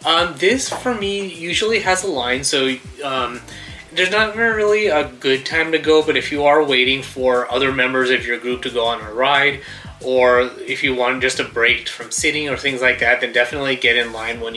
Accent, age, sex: American, 30-49, male